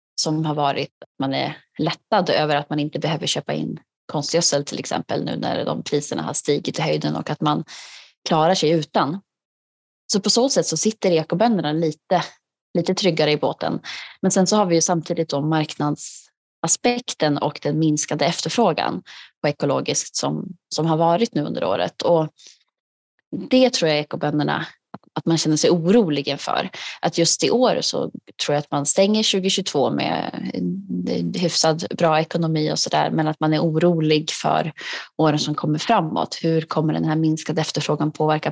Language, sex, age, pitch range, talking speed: Swedish, female, 20-39, 150-175 Hz, 170 wpm